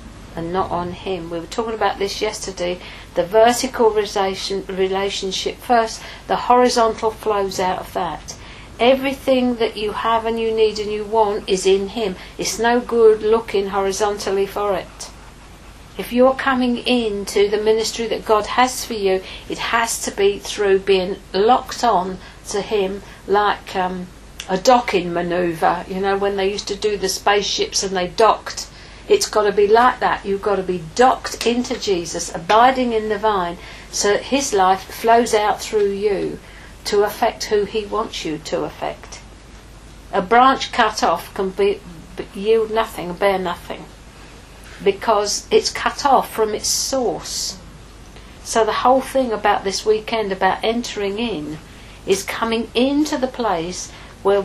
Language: English